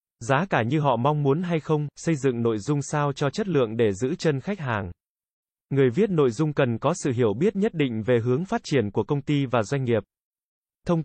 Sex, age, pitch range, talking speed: male, 20-39, 125-155 Hz, 235 wpm